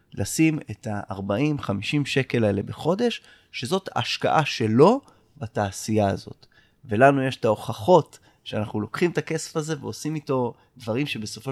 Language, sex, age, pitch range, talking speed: Hebrew, male, 20-39, 105-140 Hz, 125 wpm